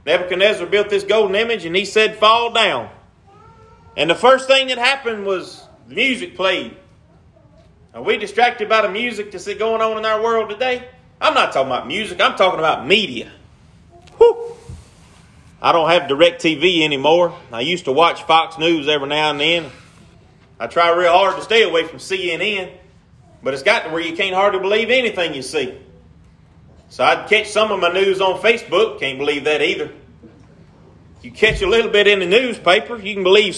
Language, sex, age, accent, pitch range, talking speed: English, male, 30-49, American, 165-225 Hz, 185 wpm